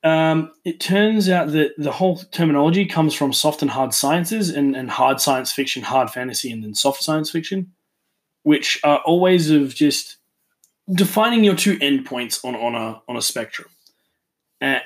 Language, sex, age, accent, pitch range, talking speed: English, male, 20-39, Australian, 135-175 Hz, 170 wpm